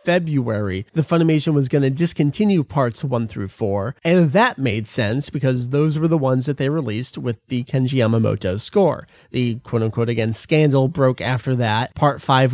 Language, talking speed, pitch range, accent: English, 175 wpm, 120-160 Hz, American